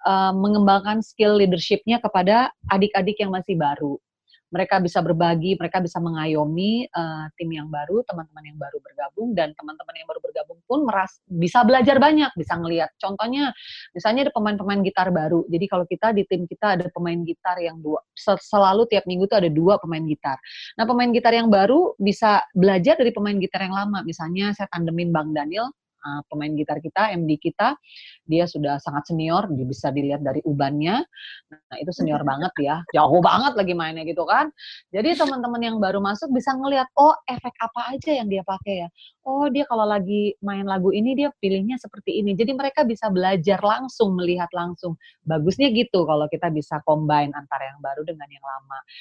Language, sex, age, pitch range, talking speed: Indonesian, female, 30-49, 160-225 Hz, 180 wpm